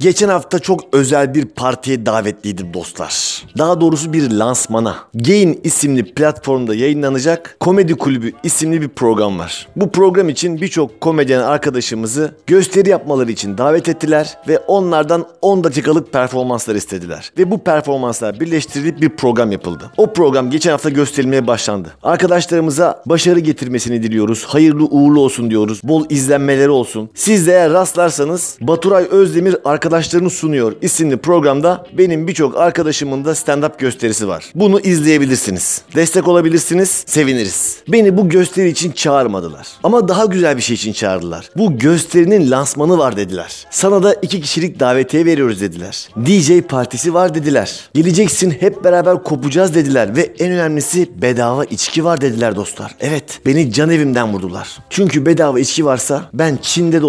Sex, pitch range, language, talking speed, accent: male, 125-175 Hz, Turkish, 145 wpm, native